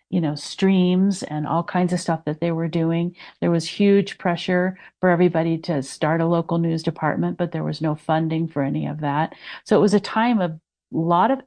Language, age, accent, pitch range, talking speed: English, 50-69, American, 160-185 Hz, 220 wpm